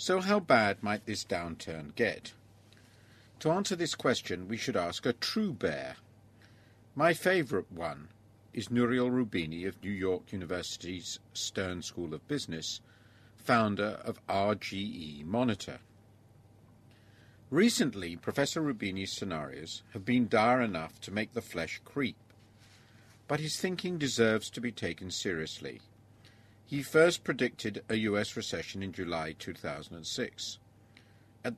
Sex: male